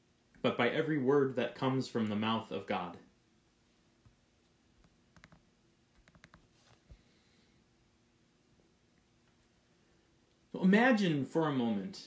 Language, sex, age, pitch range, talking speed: English, male, 30-49, 120-195 Hz, 75 wpm